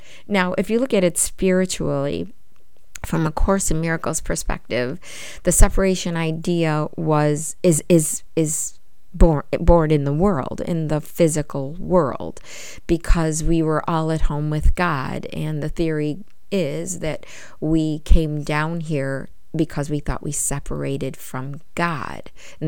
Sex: female